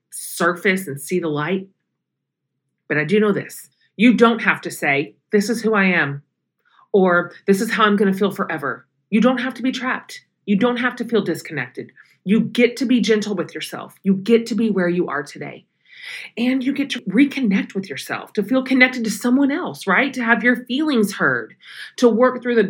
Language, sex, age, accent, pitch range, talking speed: English, female, 40-59, American, 165-230 Hz, 210 wpm